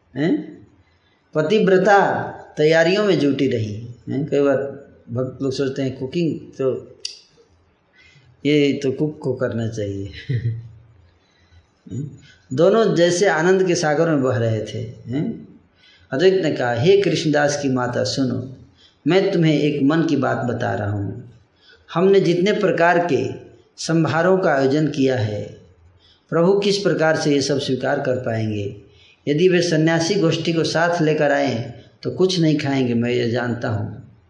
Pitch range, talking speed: 120-165 Hz, 140 wpm